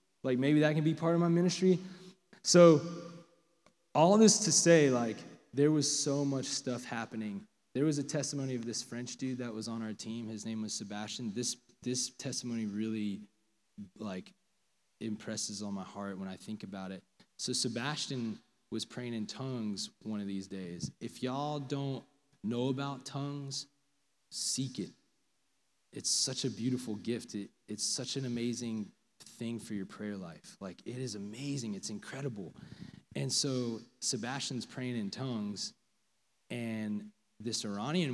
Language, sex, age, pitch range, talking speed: Polish, male, 20-39, 110-145 Hz, 160 wpm